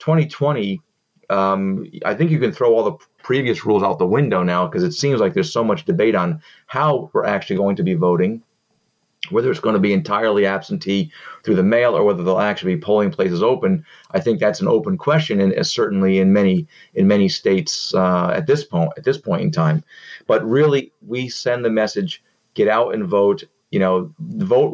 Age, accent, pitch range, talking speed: 30-49, American, 95-155 Hz, 205 wpm